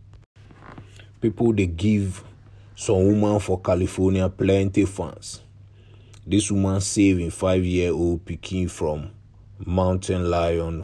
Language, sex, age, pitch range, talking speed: English, male, 30-49, 85-100 Hz, 105 wpm